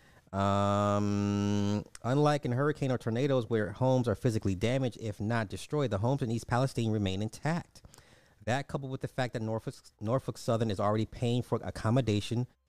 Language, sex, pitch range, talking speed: English, male, 95-130 Hz, 165 wpm